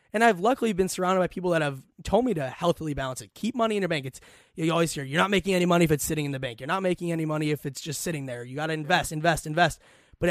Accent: American